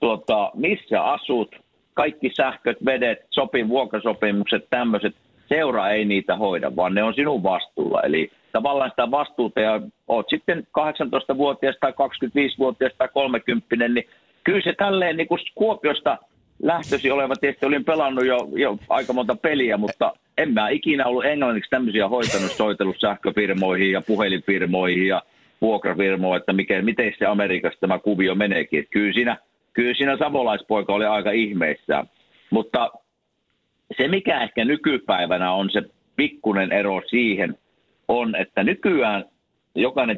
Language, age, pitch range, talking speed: Finnish, 50-69, 95-135 Hz, 135 wpm